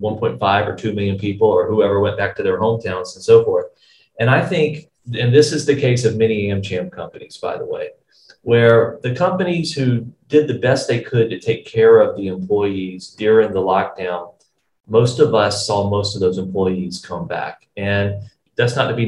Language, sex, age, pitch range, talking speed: Vietnamese, male, 30-49, 105-150 Hz, 195 wpm